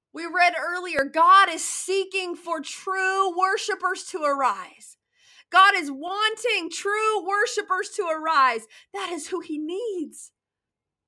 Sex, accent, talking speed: female, American, 125 wpm